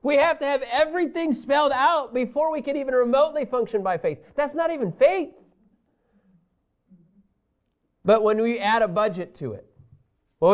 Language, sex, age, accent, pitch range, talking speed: English, male, 30-49, American, 170-260 Hz, 160 wpm